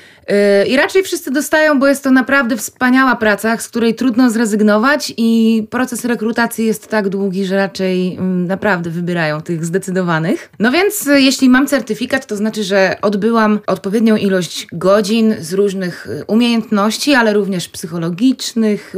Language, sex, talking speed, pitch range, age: Polish, female, 140 wpm, 195-235 Hz, 20-39